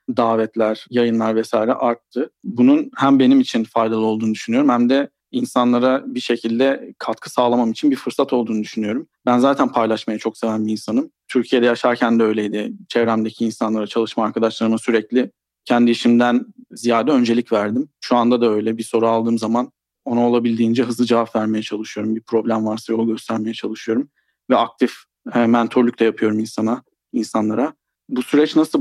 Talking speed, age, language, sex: 155 wpm, 40-59, Turkish, male